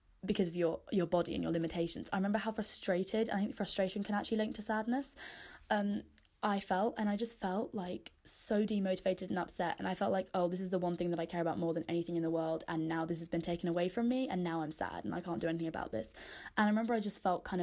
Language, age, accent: English, 10-29, British